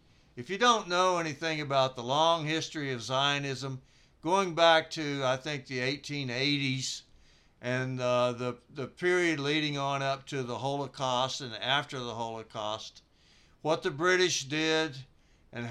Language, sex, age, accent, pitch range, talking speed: English, male, 60-79, American, 130-170 Hz, 140 wpm